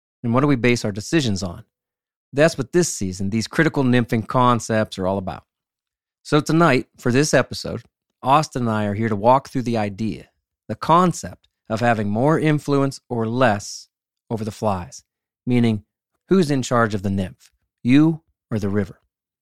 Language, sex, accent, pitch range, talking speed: English, male, American, 110-135 Hz, 175 wpm